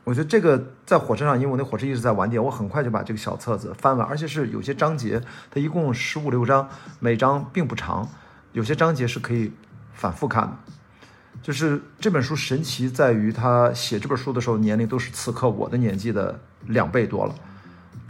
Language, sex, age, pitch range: Chinese, male, 50-69, 110-140 Hz